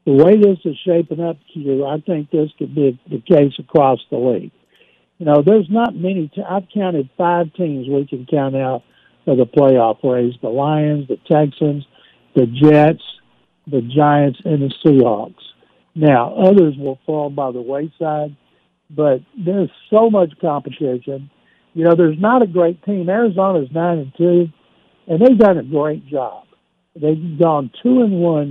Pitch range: 140-180 Hz